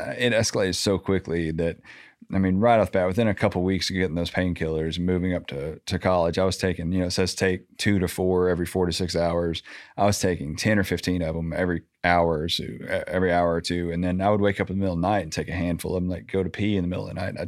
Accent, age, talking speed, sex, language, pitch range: American, 30-49, 295 wpm, male, English, 90-100 Hz